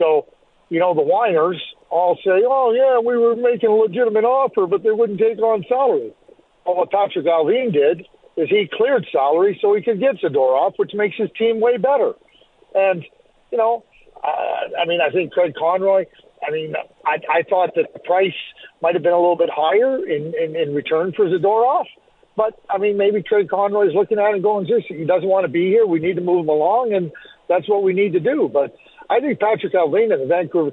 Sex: male